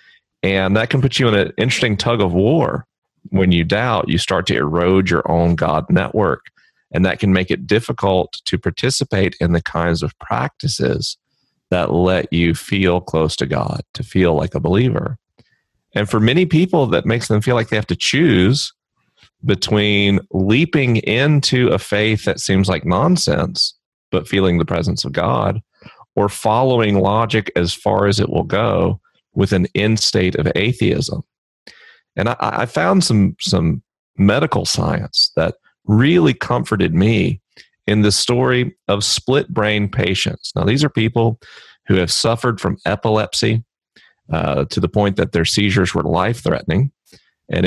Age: 40-59